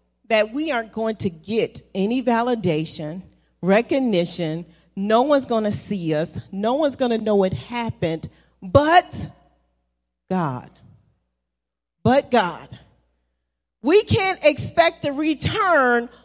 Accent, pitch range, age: American, 190-300 Hz, 40-59